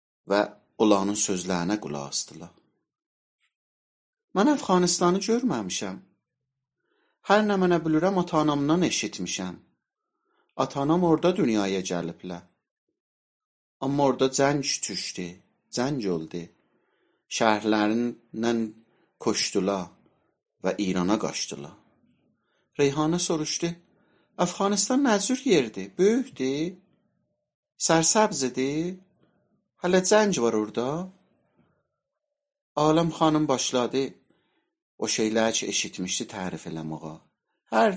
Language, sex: Persian, male